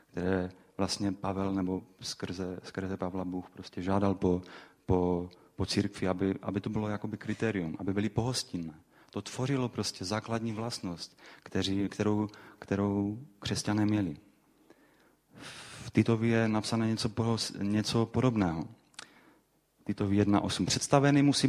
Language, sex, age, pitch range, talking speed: Czech, male, 30-49, 95-115 Hz, 120 wpm